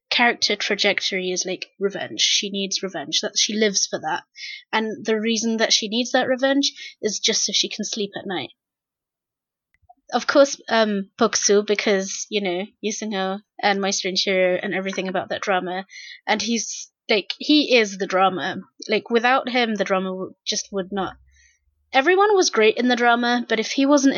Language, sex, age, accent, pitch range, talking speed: English, female, 20-39, British, 195-260 Hz, 175 wpm